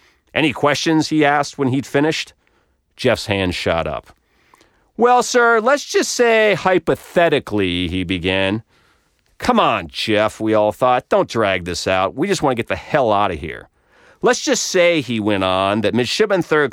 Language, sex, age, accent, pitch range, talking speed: English, male, 40-59, American, 105-160 Hz, 170 wpm